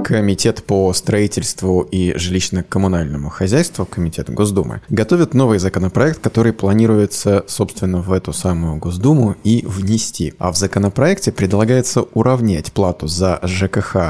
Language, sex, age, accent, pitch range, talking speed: Russian, male, 20-39, native, 90-115 Hz, 120 wpm